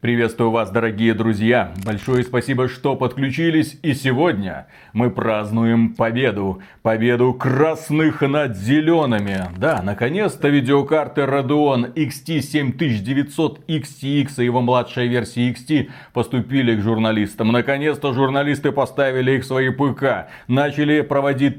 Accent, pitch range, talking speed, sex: native, 115-150 Hz, 110 wpm, male